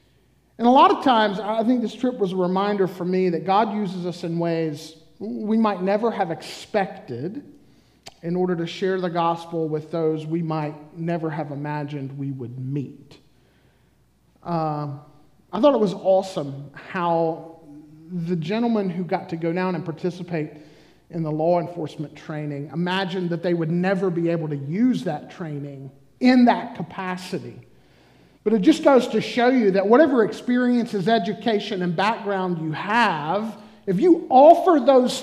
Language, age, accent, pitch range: English, 40-59, American, 155-220 Hz